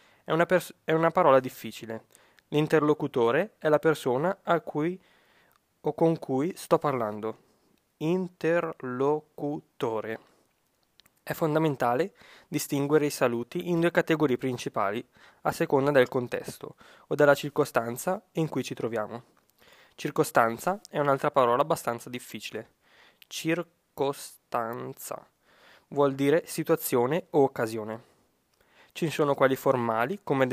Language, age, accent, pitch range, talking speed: Italian, 20-39, native, 125-160 Hz, 105 wpm